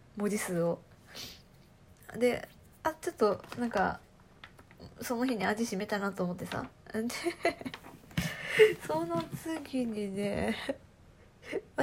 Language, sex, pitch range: Japanese, female, 195-275 Hz